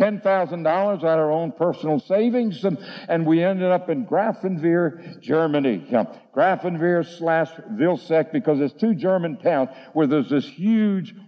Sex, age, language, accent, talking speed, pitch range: male, 60-79, English, American, 155 wpm, 170-210 Hz